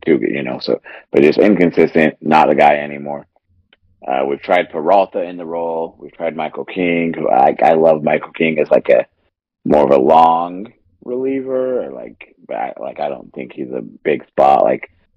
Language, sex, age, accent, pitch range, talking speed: English, male, 30-49, American, 75-110 Hz, 200 wpm